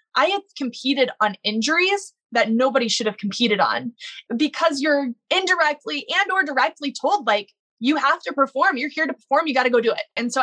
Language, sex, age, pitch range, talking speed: English, female, 20-39, 220-280 Hz, 200 wpm